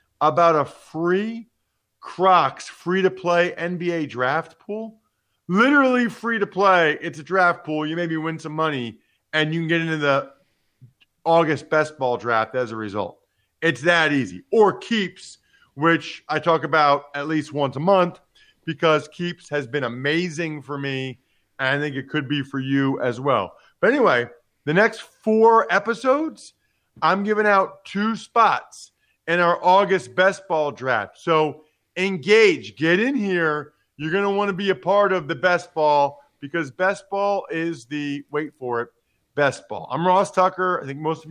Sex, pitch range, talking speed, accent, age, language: male, 150-180 Hz, 165 wpm, American, 40-59, English